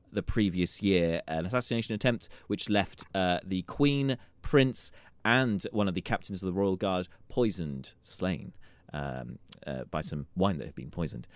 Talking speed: 170 wpm